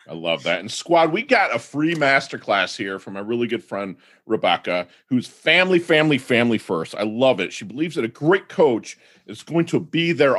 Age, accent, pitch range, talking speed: 40-59, American, 110-155 Hz, 210 wpm